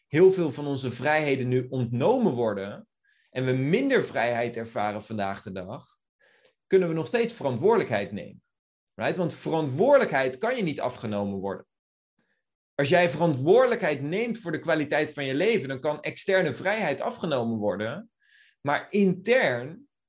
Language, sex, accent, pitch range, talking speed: Dutch, male, Dutch, 125-170 Hz, 140 wpm